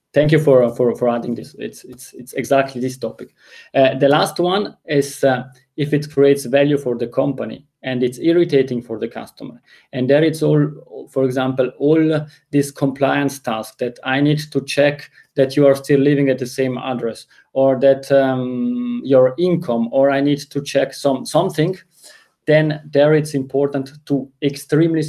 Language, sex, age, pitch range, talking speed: English, male, 30-49, 130-150 Hz, 180 wpm